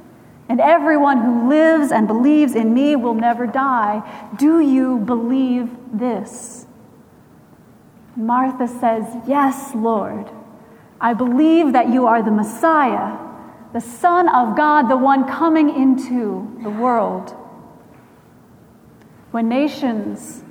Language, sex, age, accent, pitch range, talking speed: English, female, 30-49, American, 230-290 Hz, 110 wpm